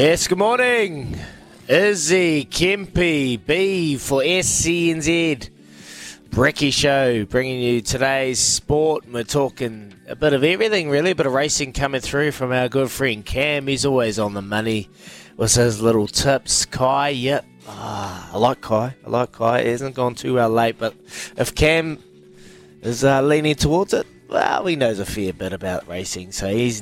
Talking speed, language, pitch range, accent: 165 wpm, English, 115-145 Hz, Australian